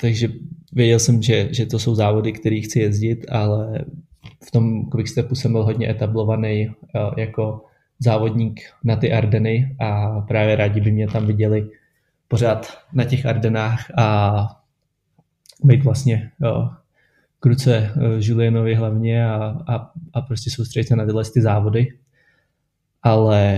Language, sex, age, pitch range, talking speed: Slovak, male, 20-39, 110-120 Hz, 135 wpm